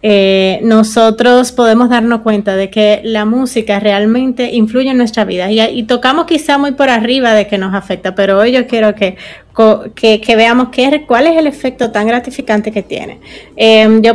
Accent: American